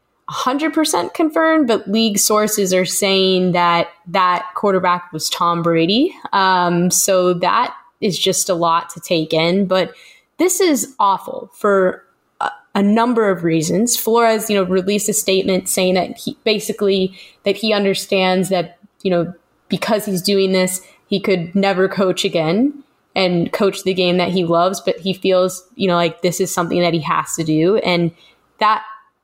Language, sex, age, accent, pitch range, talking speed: English, female, 10-29, American, 175-205 Hz, 170 wpm